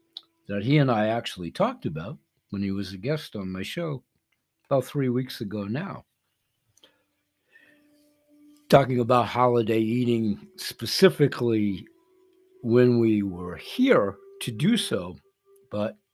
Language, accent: Chinese, American